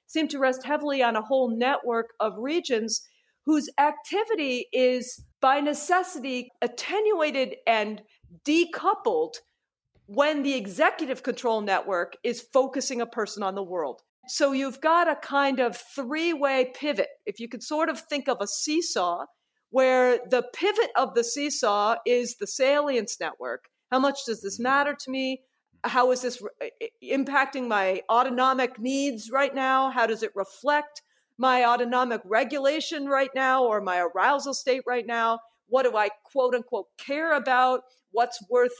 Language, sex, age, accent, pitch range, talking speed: English, female, 40-59, American, 235-295 Hz, 150 wpm